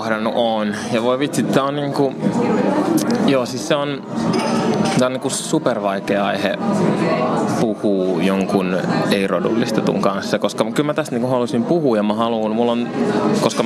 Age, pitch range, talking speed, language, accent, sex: 20-39, 105-120 Hz, 140 wpm, Finnish, native, male